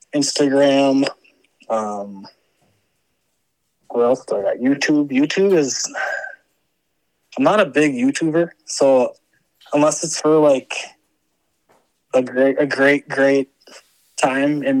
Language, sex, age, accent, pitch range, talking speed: English, male, 20-39, American, 130-150 Hz, 110 wpm